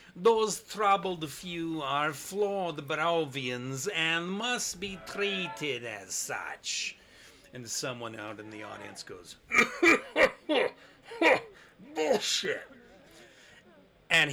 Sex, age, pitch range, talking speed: male, 40-59, 135-195 Hz, 90 wpm